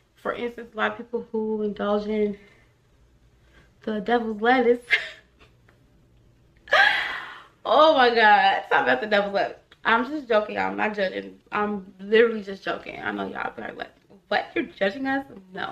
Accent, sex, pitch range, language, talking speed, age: American, female, 205-240 Hz, English, 155 wpm, 20-39